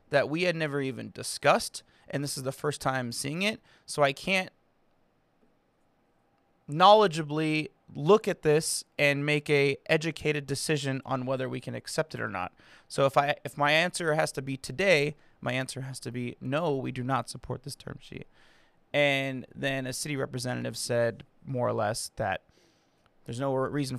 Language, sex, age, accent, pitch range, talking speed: English, male, 20-39, American, 125-150 Hz, 175 wpm